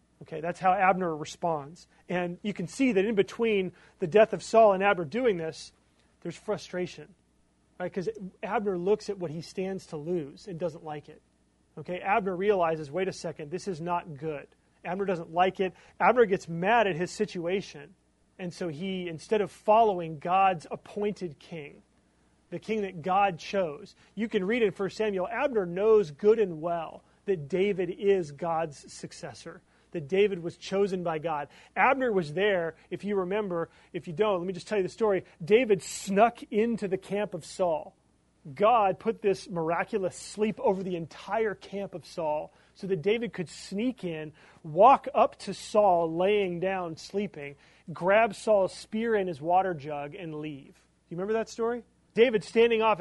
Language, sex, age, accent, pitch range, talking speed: English, male, 30-49, American, 170-215 Hz, 175 wpm